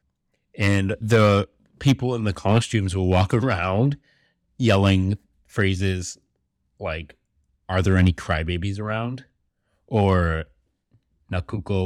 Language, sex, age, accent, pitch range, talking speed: English, male, 30-49, American, 80-105 Hz, 95 wpm